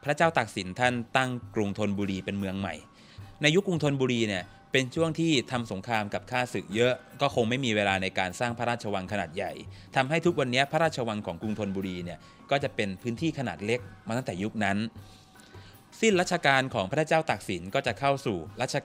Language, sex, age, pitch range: Thai, male, 20-39, 100-135 Hz